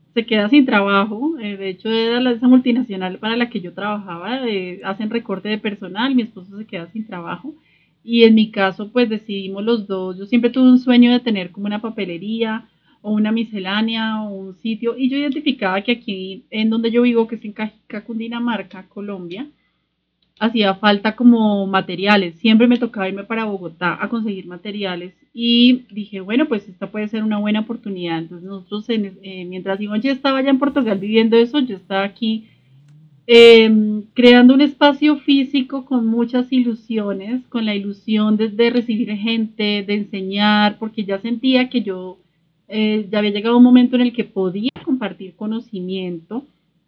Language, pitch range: Spanish, 195-240 Hz